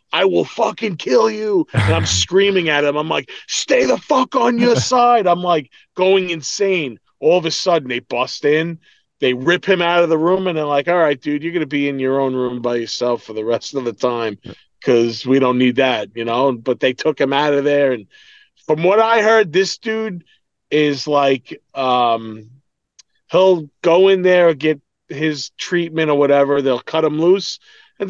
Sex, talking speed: male, 205 wpm